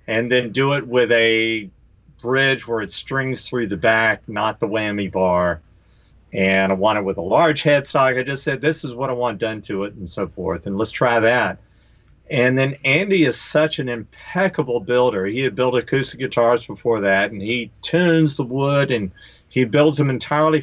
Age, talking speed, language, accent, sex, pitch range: 40-59, 200 wpm, English, American, male, 105-140 Hz